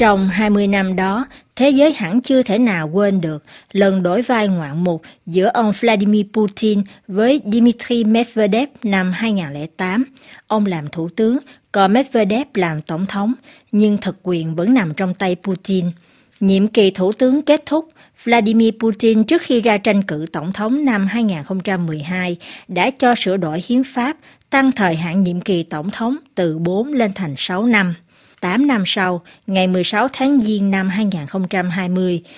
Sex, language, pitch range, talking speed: female, Vietnamese, 180-245 Hz, 165 wpm